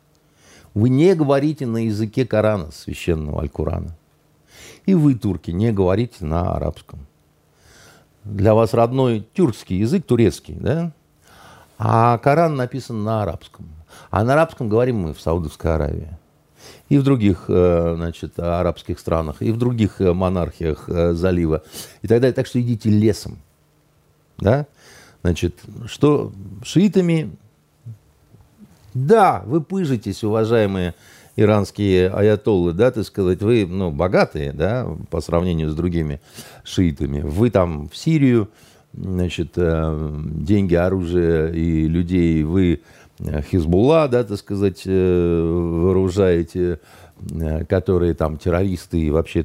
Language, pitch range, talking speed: Russian, 80-115 Hz, 115 wpm